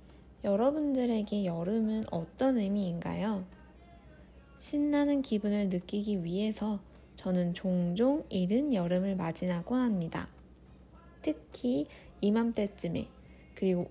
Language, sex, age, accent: Korean, female, 20-39, native